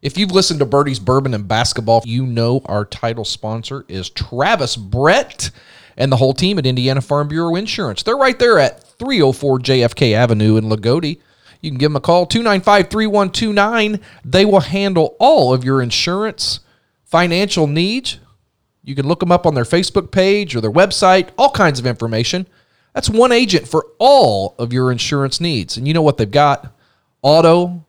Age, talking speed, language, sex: 40-59, 175 wpm, English, male